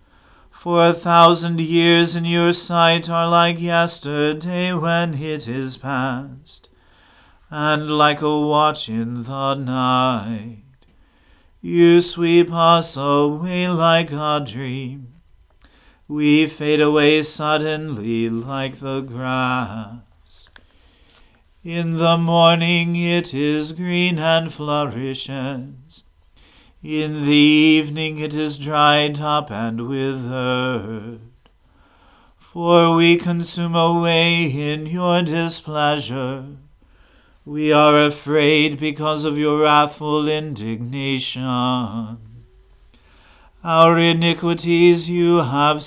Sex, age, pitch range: male, 40-59, 130-165 Hz